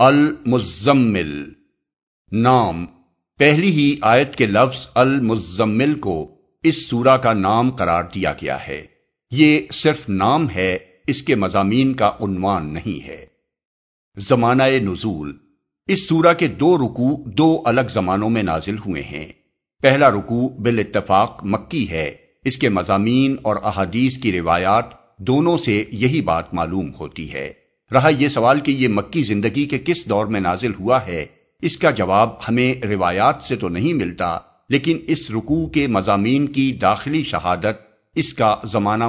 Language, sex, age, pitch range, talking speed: Urdu, male, 50-69, 95-130 Hz, 145 wpm